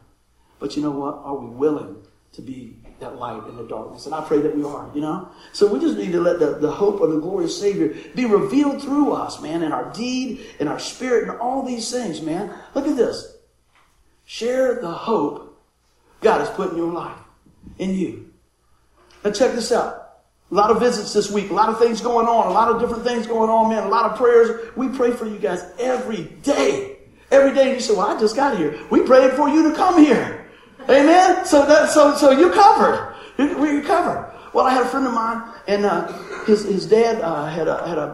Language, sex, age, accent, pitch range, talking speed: English, male, 50-69, American, 165-260 Hz, 225 wpm